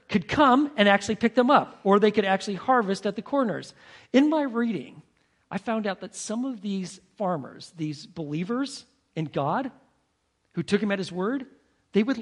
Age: 50-69